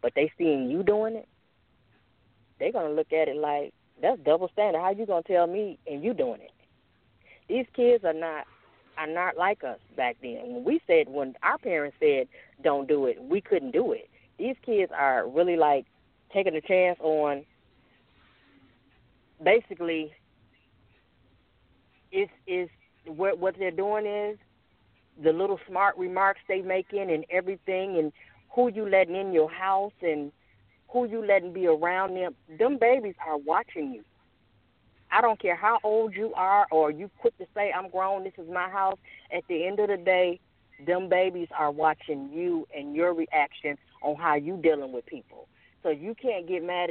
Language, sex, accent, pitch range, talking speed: English, female, American, 155-210 Hz, 175 wpm